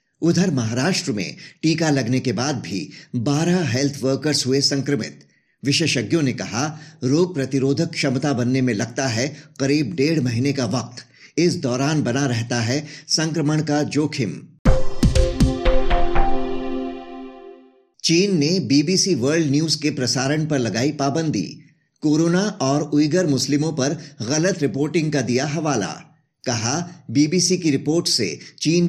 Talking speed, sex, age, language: 130 wpm, male, 50-69, Hindi